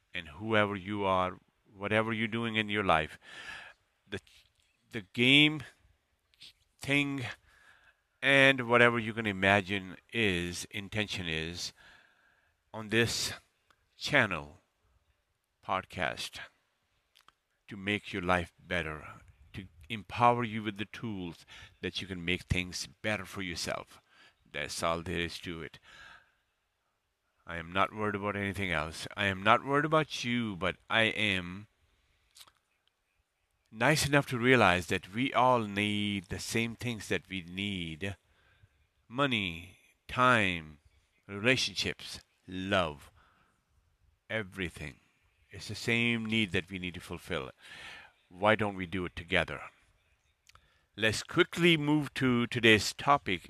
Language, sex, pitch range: English, male, 90-115 Hz